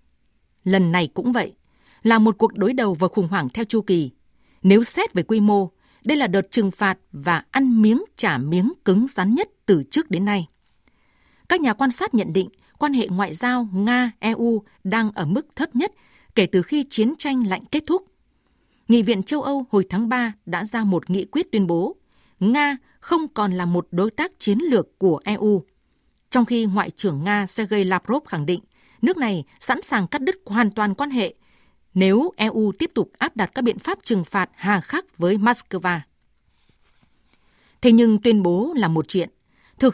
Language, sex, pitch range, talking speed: Vietnamese, female, 190-250 Hz, 190 wpm